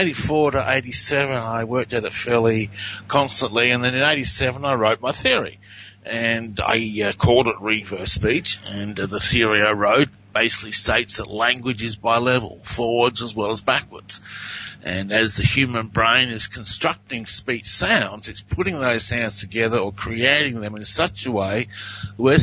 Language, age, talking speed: English, 50-69, 170 wpm